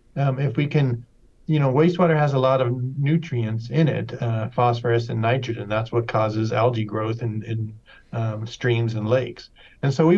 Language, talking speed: English, 190 wpm